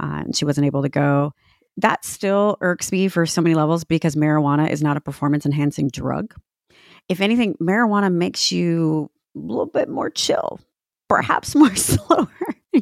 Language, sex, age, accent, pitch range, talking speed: English, female, 30-49, American, 145-185 Hz, 165 wpm